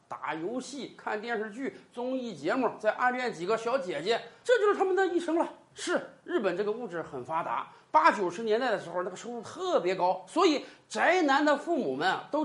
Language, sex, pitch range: Chinese, male, 230-330 Hz